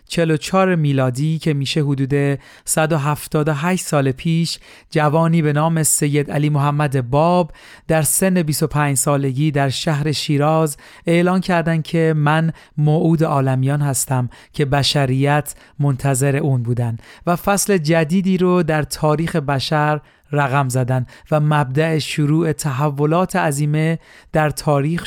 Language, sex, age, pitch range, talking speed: Persian, male, 40-59, 140-170 Hz, 125 wpm